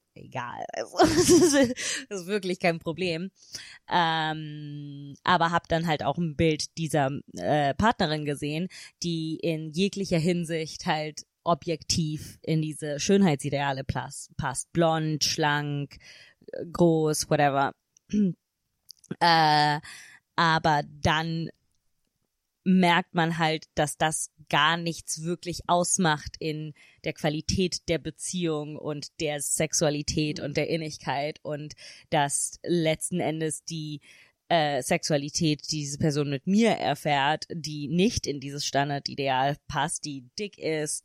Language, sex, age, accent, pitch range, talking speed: German, female, 20-39, German, 145-170 Hz, 110 wpm